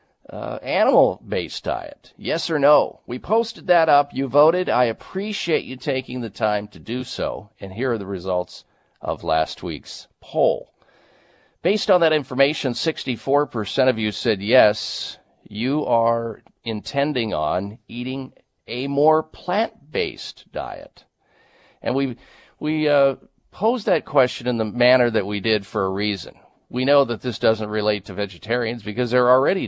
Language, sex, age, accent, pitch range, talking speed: English, male, 50-69, American, 105-140 Hz, 155 wpm